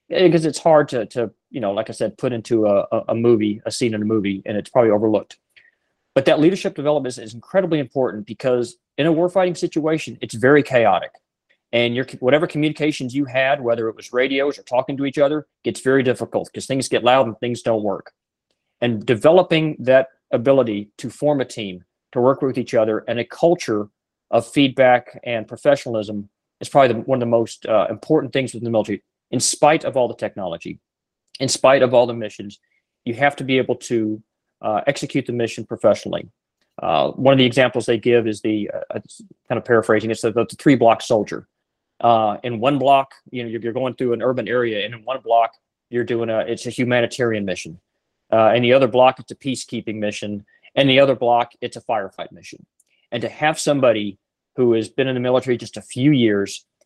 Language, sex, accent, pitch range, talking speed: English, male, American, 115-135 Hz, 205 wpm